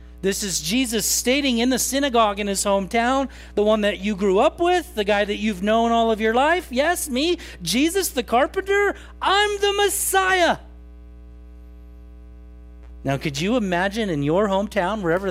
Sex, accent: male, American